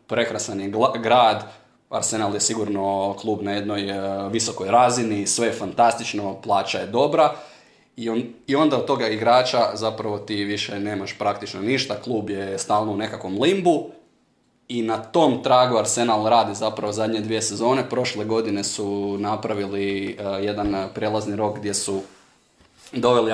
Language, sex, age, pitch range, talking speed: Croatian, male, 20-39, 100-115 Hz, 140 wpm